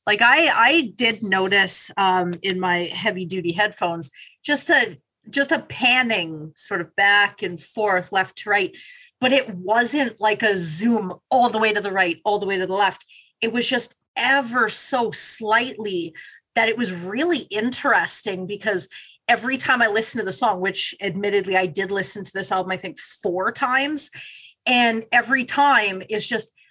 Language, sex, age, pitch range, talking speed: English, female, 30-49, 190-260 Hz, 175 wpm